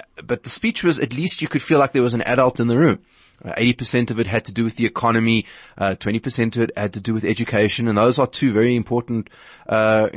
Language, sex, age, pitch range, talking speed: English, male, 30-49, 95-115 Hz, 255 wpm